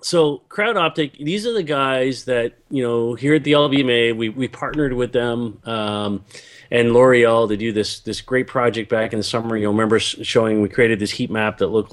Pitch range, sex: 110-135 Hz, male